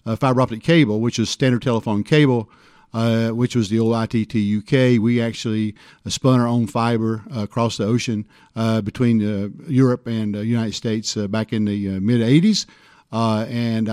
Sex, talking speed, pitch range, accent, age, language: male, 190 wpm, 110-125 Hz, American, 50-69, English